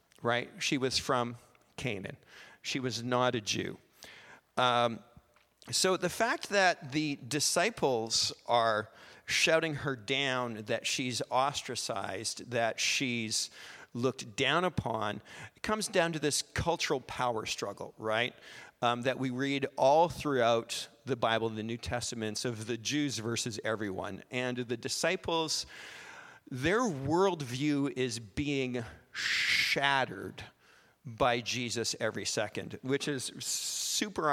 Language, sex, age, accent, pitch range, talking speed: English, male, 50-69, American, 120-160 Hz, 120 wpm